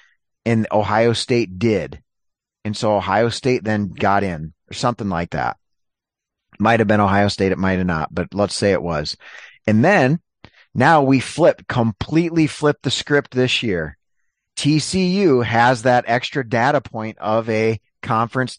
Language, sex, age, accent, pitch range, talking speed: English, male, 30-49, American, 105-125 Hz, 160 wpm